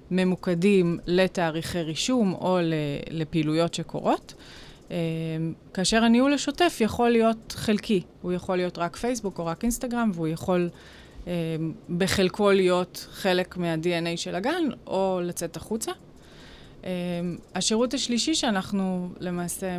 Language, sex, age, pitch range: Hebrew, female, 20-39, 175-210 Hz